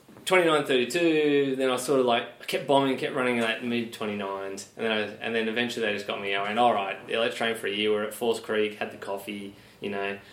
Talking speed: 250 wpm